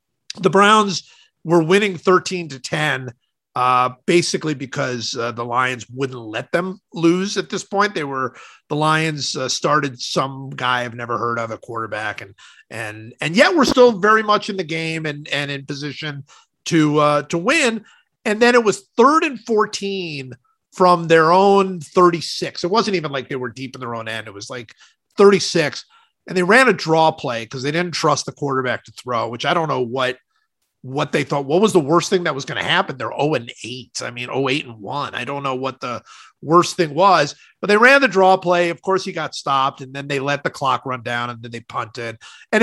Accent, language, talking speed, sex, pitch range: American, English, 220 wpm, male, 130-185 Hz